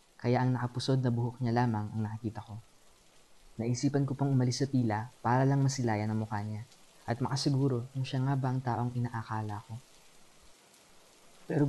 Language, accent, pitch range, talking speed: Filipino, native, 115-135 Hz, 170 wpm